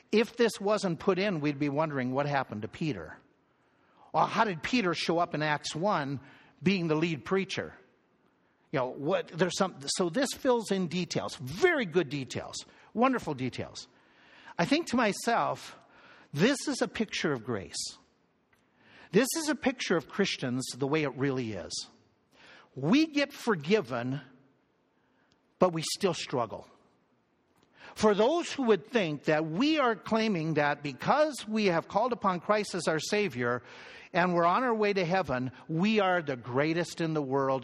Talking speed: 160 wpm